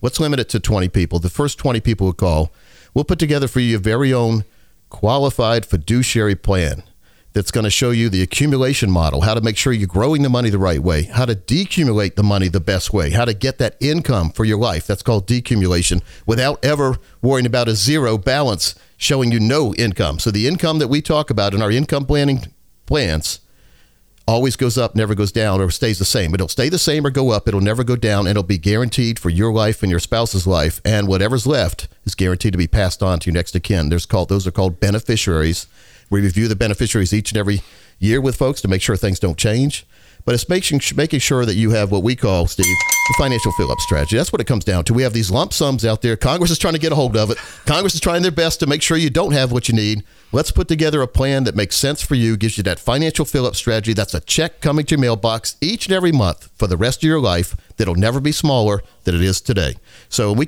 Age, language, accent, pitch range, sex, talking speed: 50-69, English, American, 100-135 Hz, male, 240 wpm